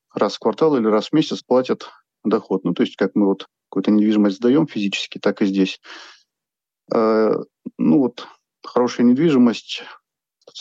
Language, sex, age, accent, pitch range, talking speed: Russian, male, 40-59, native, 110-130 Hz, 155 wpm